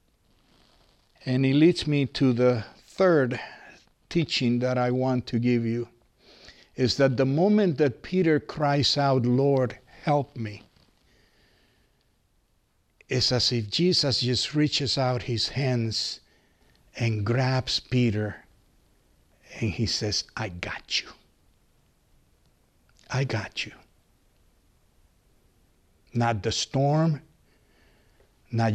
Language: English